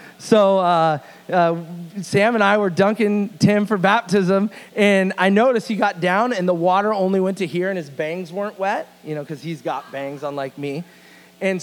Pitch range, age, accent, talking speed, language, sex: 175-220 Hz, 30-49, American, 195 wpm, English, male